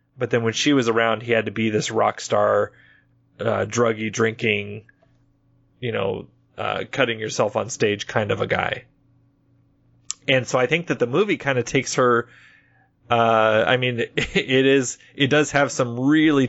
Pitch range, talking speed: 110-130 Hz, 175 wpm